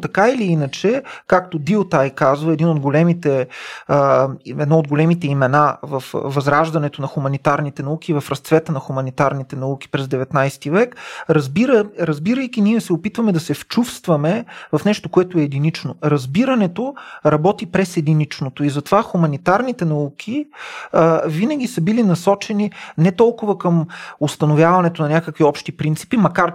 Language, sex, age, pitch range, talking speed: Bulgarian, male, 30-49, 150-185 Hz, 135 wpm